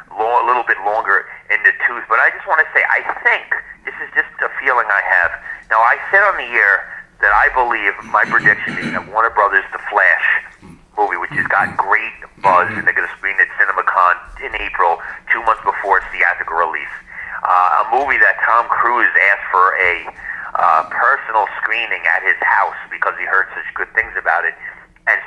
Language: English